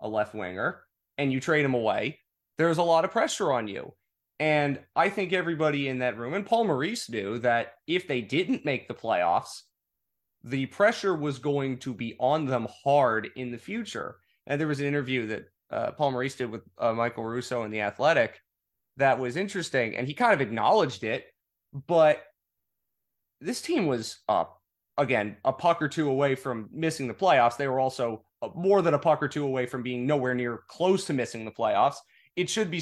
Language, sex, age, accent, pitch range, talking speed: English, male, 30-49, American, 120-155 Hz, 195 wpm